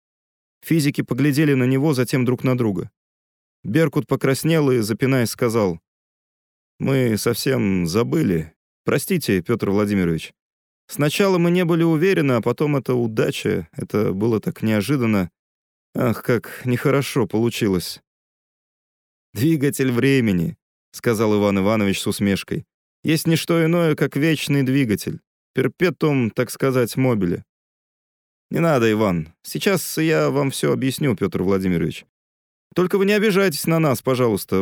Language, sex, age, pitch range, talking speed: Russian, male, 30-49, 100-150 Hz, 125 wpm